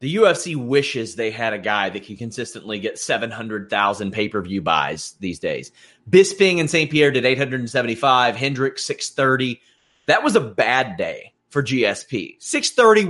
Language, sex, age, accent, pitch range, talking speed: English, male, 30-49, American, 125-170 Hz, 145 wpm